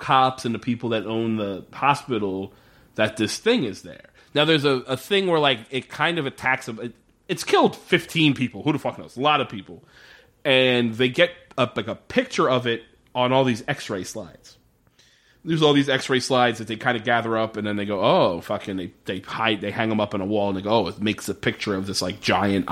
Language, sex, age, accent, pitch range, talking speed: English, male, 30-49, American, 110-140 Hz, 235 wpm